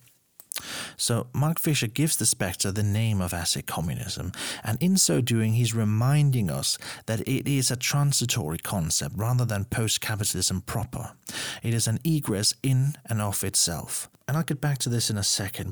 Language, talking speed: English, 170 wpm